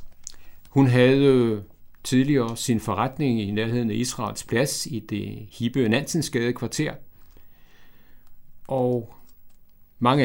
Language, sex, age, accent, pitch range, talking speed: Danish, male, 60-79, native, 105-135 Hz, 100 wpm